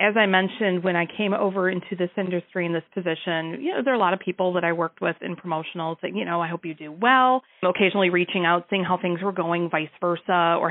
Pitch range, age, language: 170-220 Hz, 40-59, English